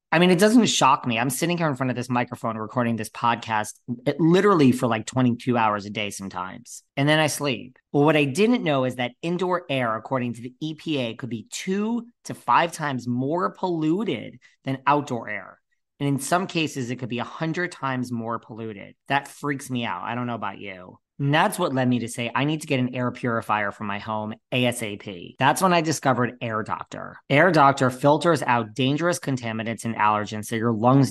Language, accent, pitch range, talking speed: English, American, 115-150 Hz, 210 wpm